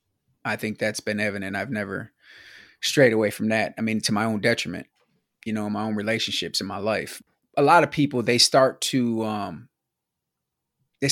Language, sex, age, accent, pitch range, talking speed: English, male, 20-39, American, 110-135 Hz, 190 wpm